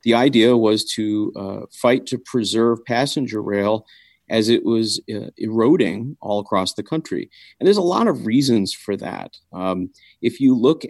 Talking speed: 170 wpm